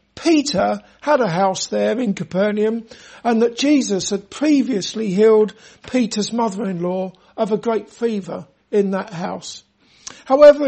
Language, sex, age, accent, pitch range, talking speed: English, male, 50-69, British, 210-255 Hz, 130 wpm